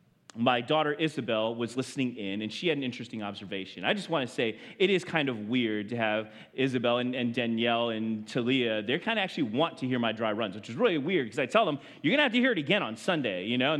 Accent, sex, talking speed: American, male, 265 wpm